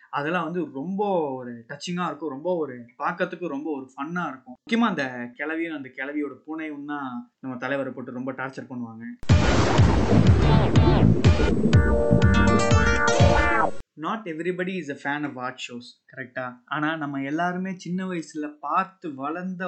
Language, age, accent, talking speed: Tamil, 20-39, native, 60 wpm